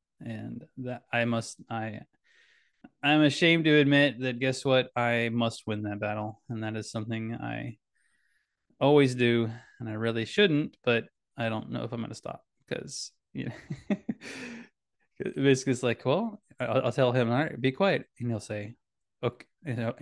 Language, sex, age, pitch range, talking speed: English, male, 20-39, 115-145 Hz, 170 wpm